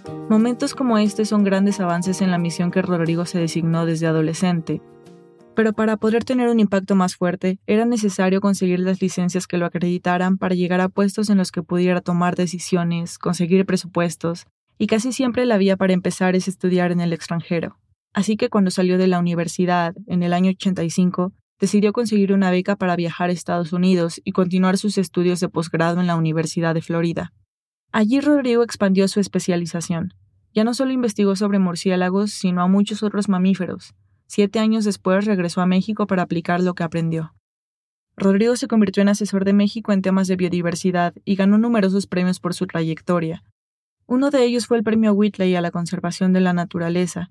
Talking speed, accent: 185 wpm, Colombian